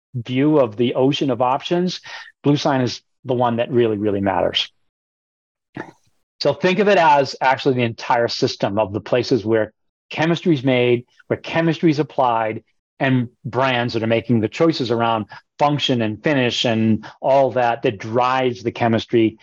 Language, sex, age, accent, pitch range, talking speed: English, male, 40-59, American, 115-160 Hz, 165 wpm